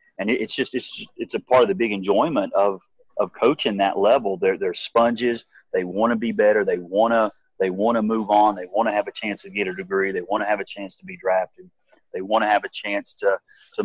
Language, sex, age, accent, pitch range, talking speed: English, male, 30-49, American, 95-120 Hz, 250 wpm